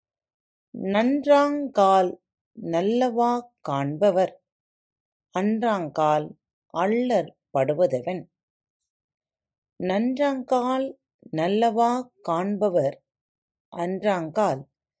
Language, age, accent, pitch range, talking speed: Tamil, 30-49, native, 165-250 Hz, 40 wpm